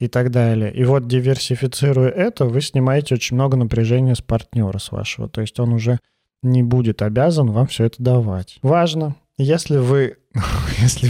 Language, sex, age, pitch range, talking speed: Russian, male, 20-39, 115-135 Hz, 170 wpm